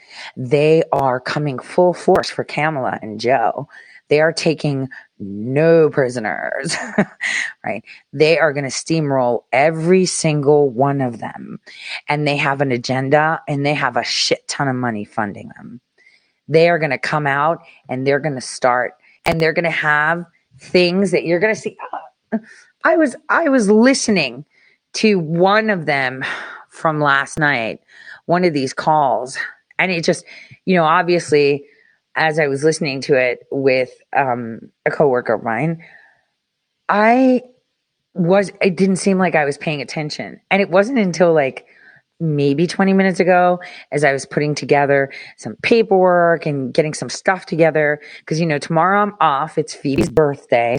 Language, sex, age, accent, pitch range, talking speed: English, female, 30-49, American, 140-180 Hz, 160 wpm